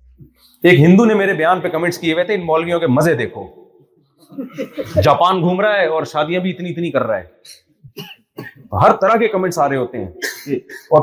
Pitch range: 145-195 Hz